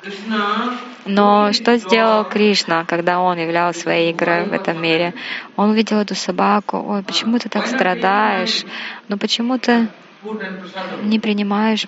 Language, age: Russian, 20-39